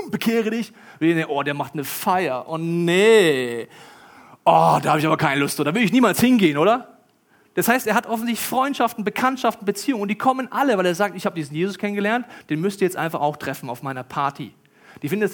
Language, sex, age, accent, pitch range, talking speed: German, male, 40-59, German, 155-205 Hz, 215 wpm